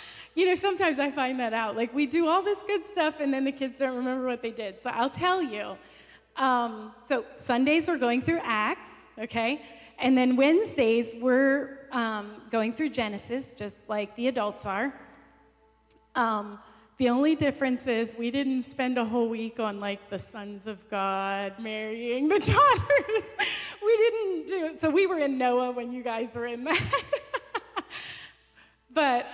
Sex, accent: female, American